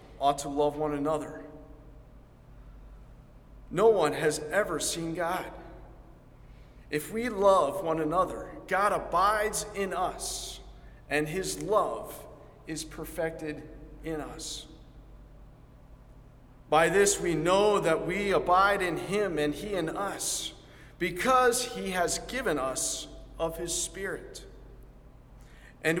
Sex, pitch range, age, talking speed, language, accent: male, 150-200 Hz, 40-59, 115 wpm, English, American